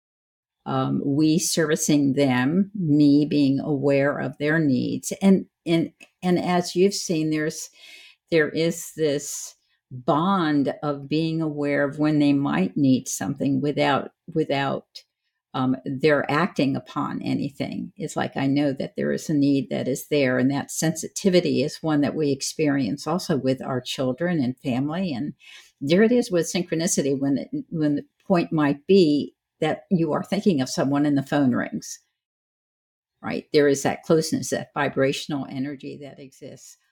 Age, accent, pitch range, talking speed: 60-79, American, 140-185 Hz, 155 wpm